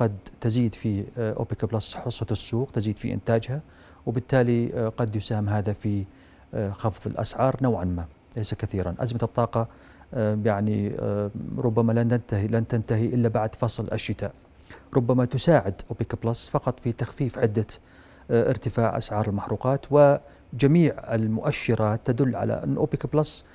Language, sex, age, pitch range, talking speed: Arabic, male, 40-59, 105-120 Hz, 130 wpm